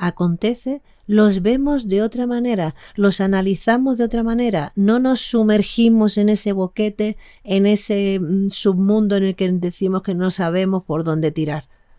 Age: 40-59